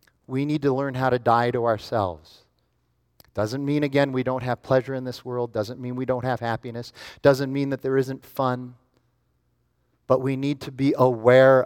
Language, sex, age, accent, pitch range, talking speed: English, male, 40-59, American, 125-170 Hz, 190 wpm